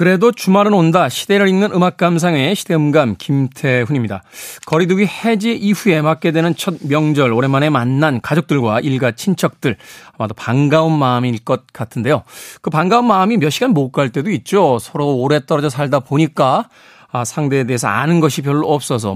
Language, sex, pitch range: Korean, male, 130-185 Hz